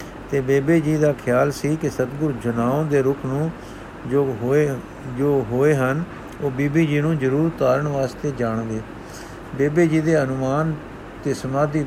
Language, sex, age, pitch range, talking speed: Punjabi, male, 60-79, 125-155 Hz, 155 wpm